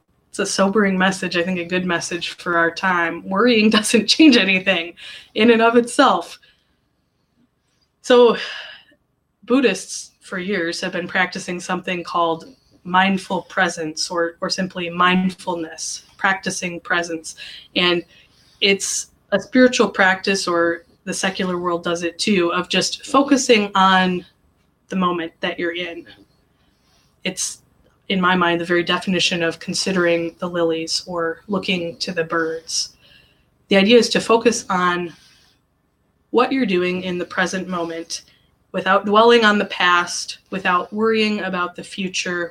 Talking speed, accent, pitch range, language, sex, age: 135 wpm, American, 170-195 Hz, English, female, 20-39